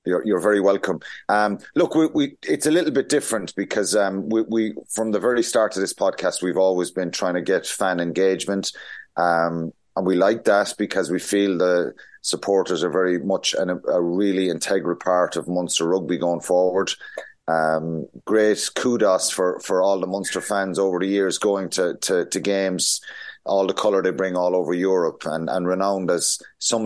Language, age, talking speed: English, 30-49, 190 wpm